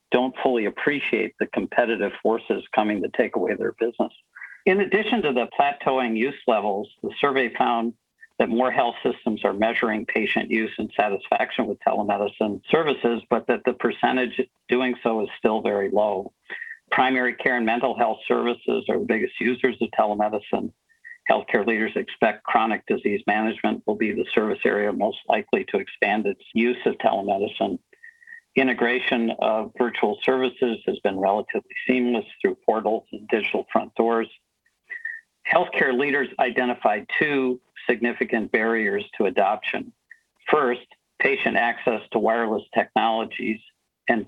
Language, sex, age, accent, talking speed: English, male, 50-69, American, 140 wpm